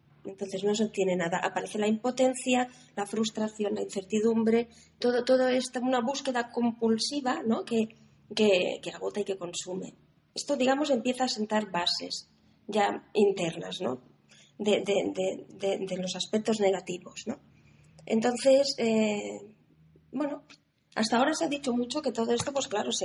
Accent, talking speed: Spanish, 155 wpm